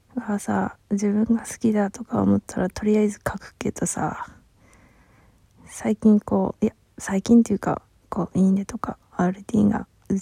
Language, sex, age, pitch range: Japanese, female, 20-39, 180-220 Hz